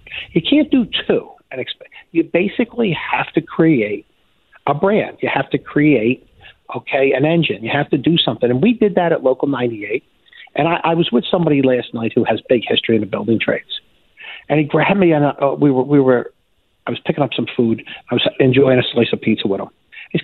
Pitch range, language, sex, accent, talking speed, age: 120-160 Hz, English, male, American, 215 wpm, 50-69